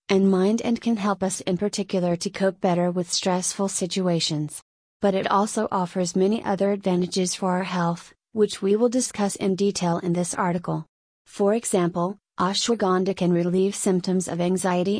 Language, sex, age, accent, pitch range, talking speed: English, female, 30-49, American, 180-205 Hz, 165 wpm